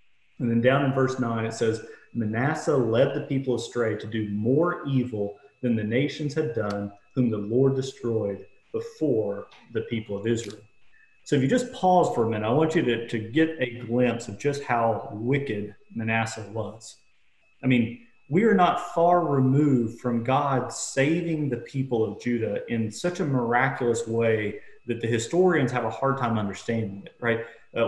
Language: English